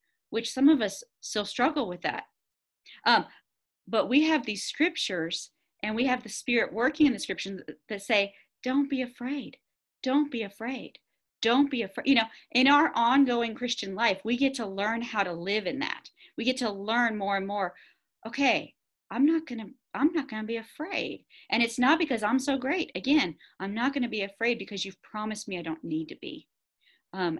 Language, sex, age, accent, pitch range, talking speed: English, female, 40-59, American, 190-265 Hz, 200 wpm